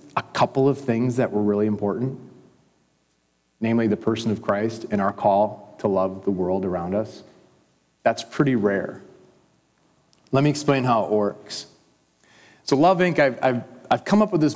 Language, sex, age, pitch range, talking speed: English, male, 40-59, 105-145 Hz, 170 wpm